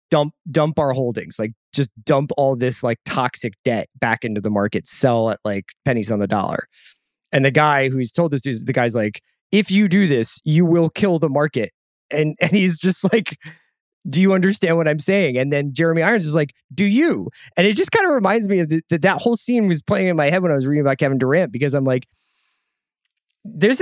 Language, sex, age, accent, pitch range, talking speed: English, male, 20-39, American, 130-190 Hz, 225 wpm